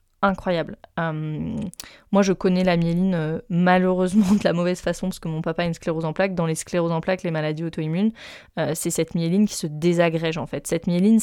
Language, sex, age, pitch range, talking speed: French, female, 20-39, 170-205 Hz, 220 wpm